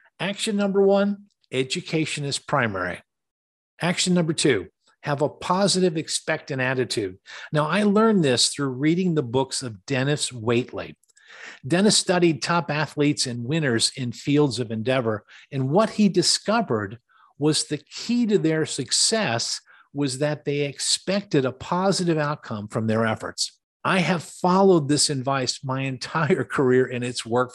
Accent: American